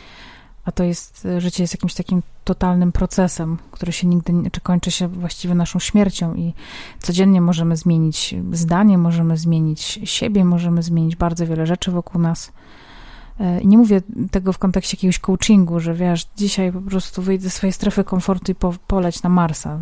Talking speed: 165 wpm